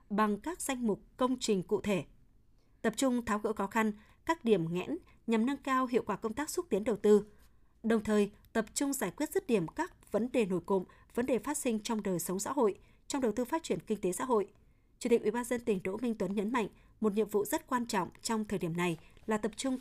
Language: Vietnamese